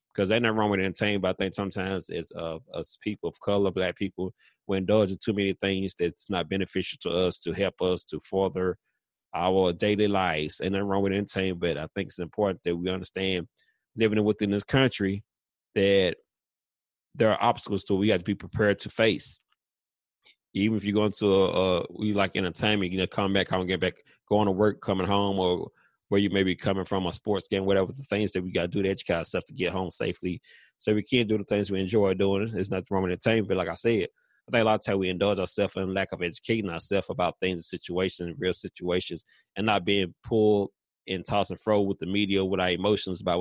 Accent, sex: American, male